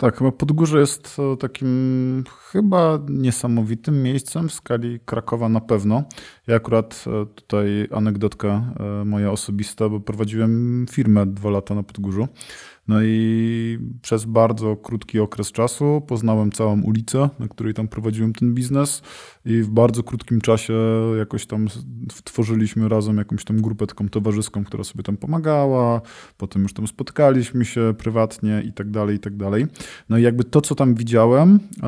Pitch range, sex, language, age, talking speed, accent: 110-130 Hz, male, Polish, 20-39, 145 wpm, native